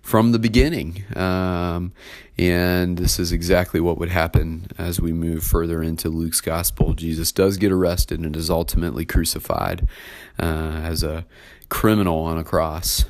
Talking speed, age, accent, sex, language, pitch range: 150 wpm, 30-49, American, male, English, 85-105 Hz